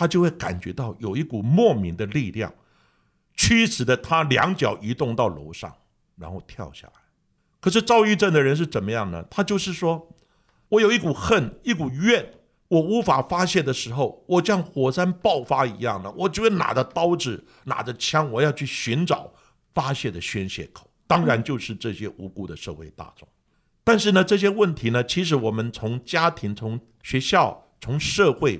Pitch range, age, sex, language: 110-170 Hz, 50-69, male, Chinese